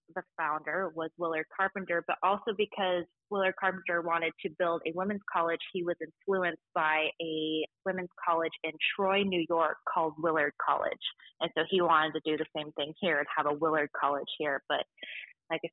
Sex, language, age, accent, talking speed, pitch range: female, English, 20-39, American, 185 wpm, 160-200 Hz